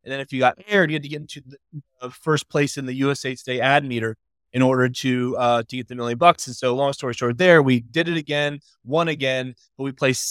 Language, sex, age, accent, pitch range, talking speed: English, male, 20-39, American, 125-145 Hz, 260 wpm